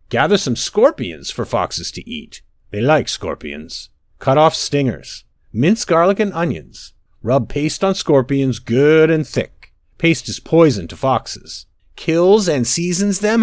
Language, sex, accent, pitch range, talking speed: English, male, American, 110-175 Hz, 145 wpm